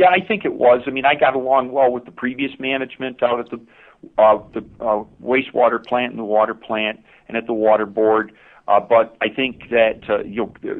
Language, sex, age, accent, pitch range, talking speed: English, male, 50-69, American, 105-125 Hz, 220 wpm